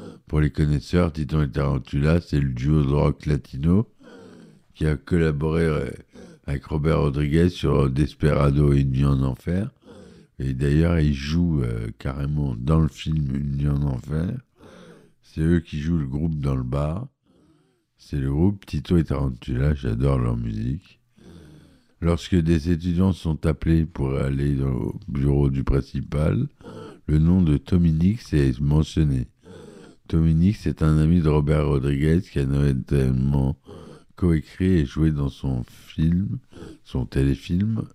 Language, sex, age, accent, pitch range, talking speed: French, male, 60-79, French, 70-85 Hz, 145 wpm